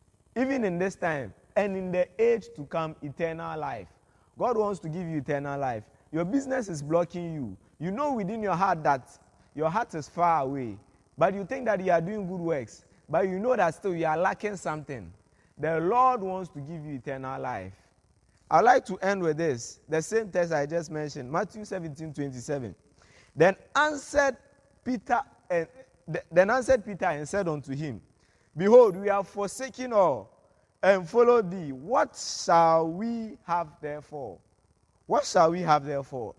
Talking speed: 170 wpm